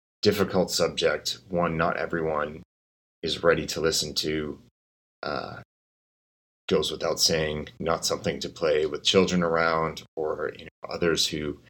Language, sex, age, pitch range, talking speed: English, male, 30-49, 70-90 Hz, 135 wpm